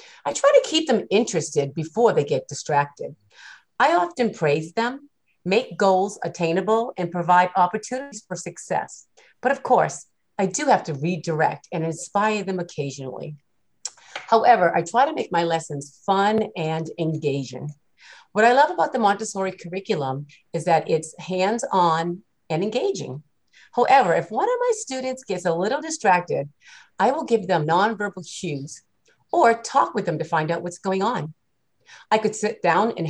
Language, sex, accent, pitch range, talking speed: English, female, American, 165-220 Hz, 160 wpm